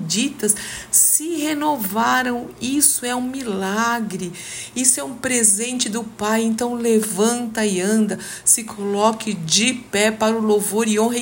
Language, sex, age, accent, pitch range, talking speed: Portuguese, female, 50-69, Brazilian, 190-245 Hz, 140 wpm